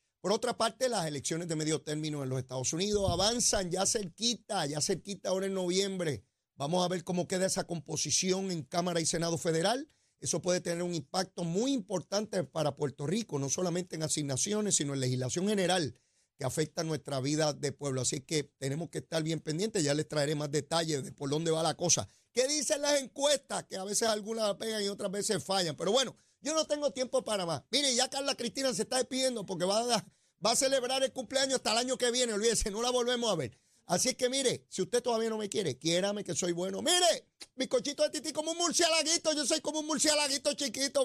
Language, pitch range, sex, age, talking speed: Spanish, 165-245 Hz, male, 30-49, 215 wpm